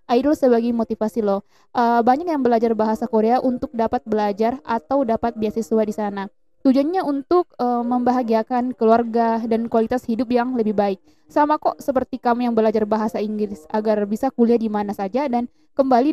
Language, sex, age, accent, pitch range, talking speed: Indonesian, female, 20-39, native, 215-255 Hz, 165 wpm